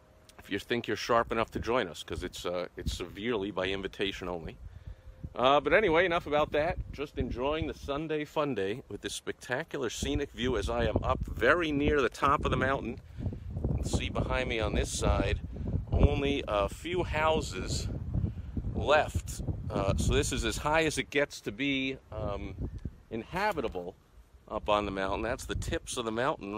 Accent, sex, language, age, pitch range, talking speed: American, male, English, 50-69, 95-130 Hz, 185 wpm